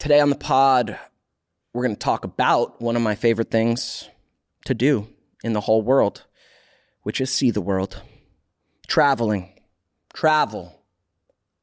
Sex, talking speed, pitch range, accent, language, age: male, 140 wpm, 115-145 Hz, American, English, 30-49